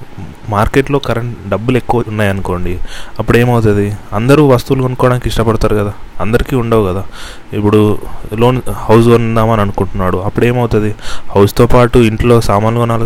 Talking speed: 125 wpm